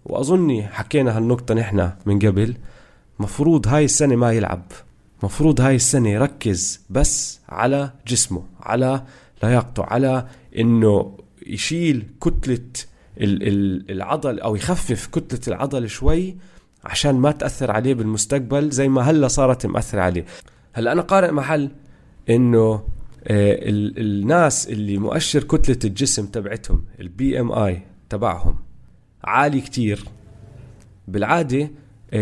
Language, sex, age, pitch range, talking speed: Arabic, male, 20-39, 105-150 Hz, 110 wpm